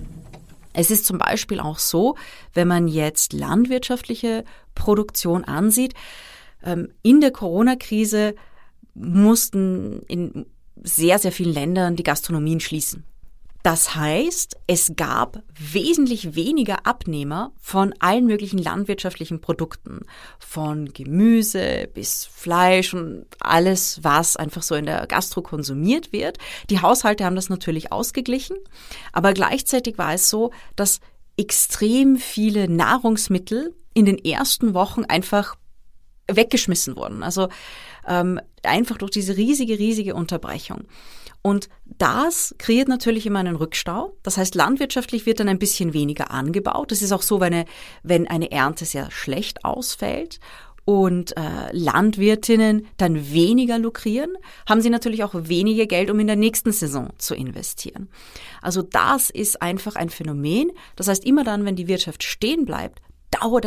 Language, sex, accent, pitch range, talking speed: German, female, German, 170-230 Hz, 135 wpm